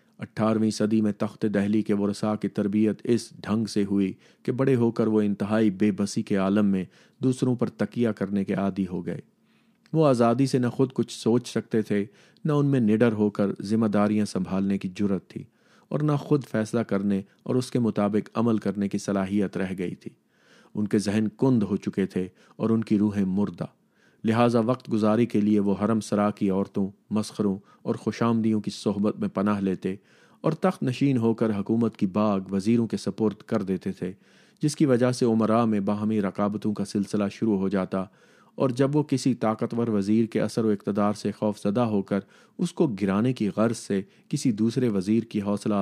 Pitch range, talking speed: 100-115 Hz, 200 wpm